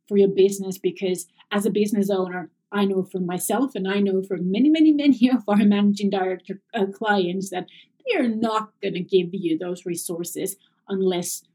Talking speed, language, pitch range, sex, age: 180 wpm, English, 190-245 Hz, female, 30-49